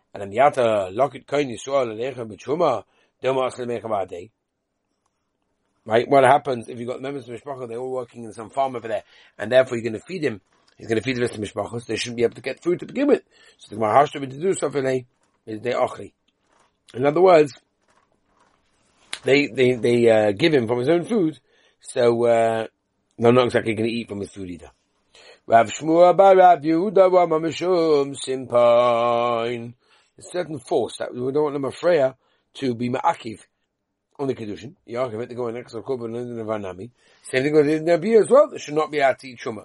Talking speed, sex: 170 wpm, male